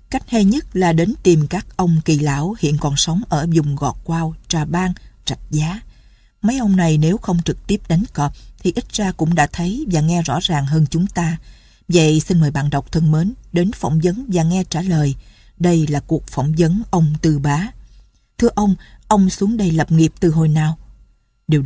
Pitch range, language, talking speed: 155-185 Hz, Vietnamese, 215 wpm